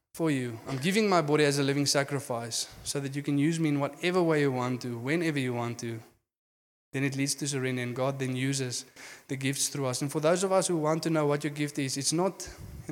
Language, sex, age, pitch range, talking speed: English, male, 20-39, 130-150 Hz, 255 wpm